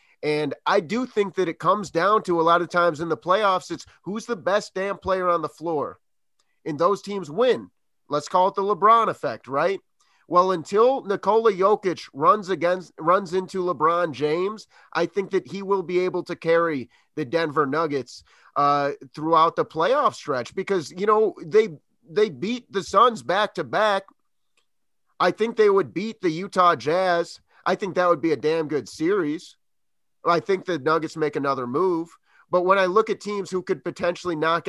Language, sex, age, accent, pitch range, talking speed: English, male, 30-49, American, 165-205 Hz, 185 wpm